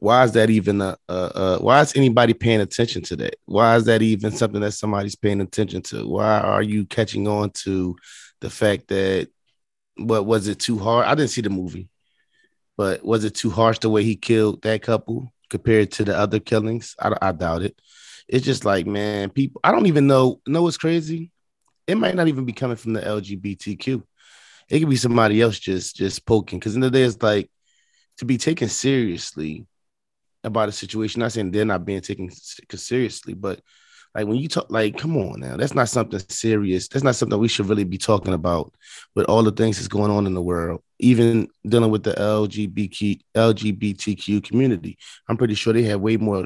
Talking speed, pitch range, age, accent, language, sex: 205 wpm, 100-115 Hz, 20-39, American, English, male